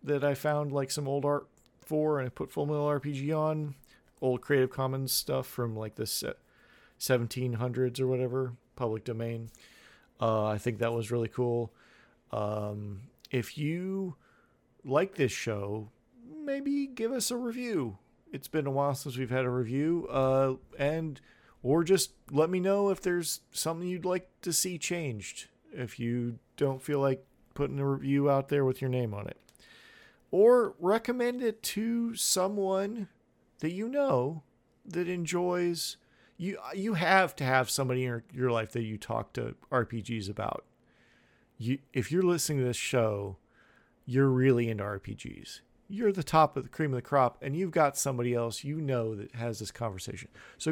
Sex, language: male, English